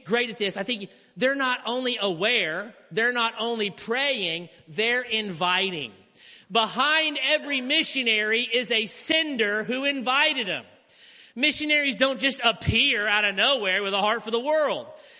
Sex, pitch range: male, 165-230 Hz